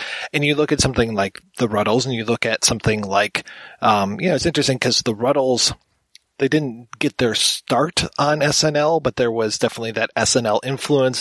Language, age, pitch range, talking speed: English, 30-49, 115-140 Hz, 195 wpm